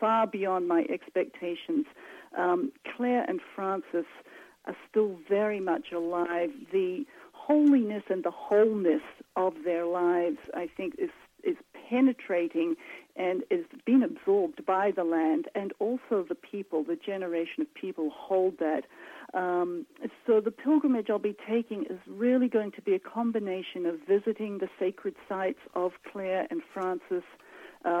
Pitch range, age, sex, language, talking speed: 185-300 Hz, 50-69, female, English, 145 wpm